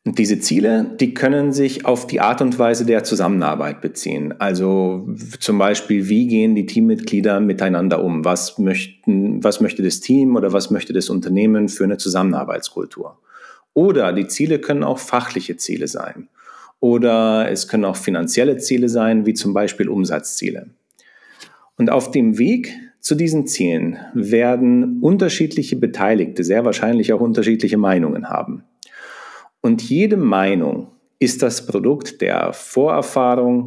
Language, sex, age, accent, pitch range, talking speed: German, male, 40-59, German, 110-180 Hz, 145 wpm